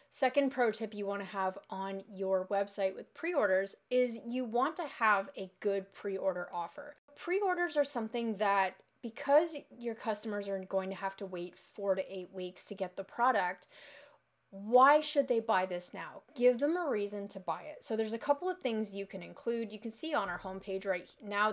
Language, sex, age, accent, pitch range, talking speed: English, female, 30-49, American, 190-245 Hz, 200 wpm